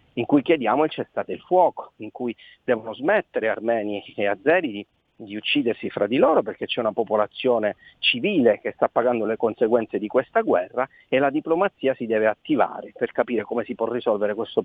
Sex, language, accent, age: male, Italian, native, 40-59